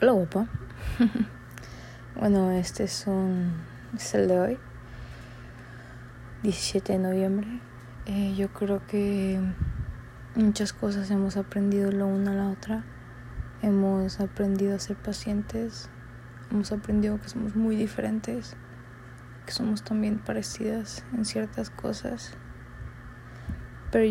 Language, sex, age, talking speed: Spanish, female, 20-39, 110 wpm